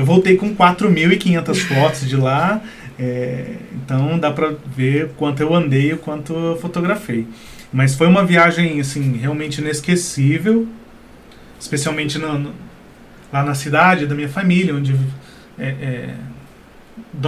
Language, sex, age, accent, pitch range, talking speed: Portuguese, male, 30-49, Brazilian, 140-175 Hz, 140 wpm